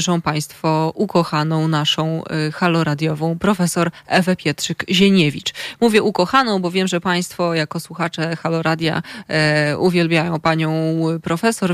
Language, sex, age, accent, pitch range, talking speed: Polish, female, 20-39, native, 160-180 Hz, 110 wpm